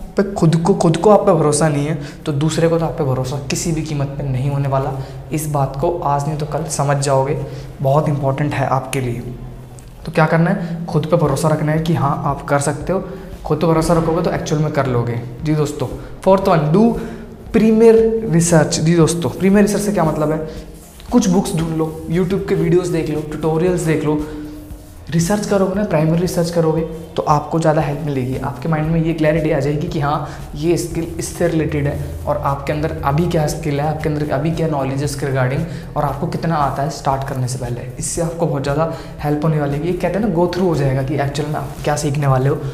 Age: 20-39